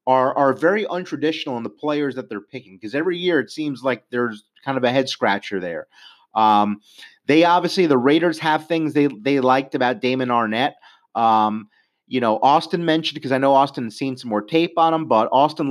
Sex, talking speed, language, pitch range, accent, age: male, 205 wpm, English, 110-160 Hz, American, 30-49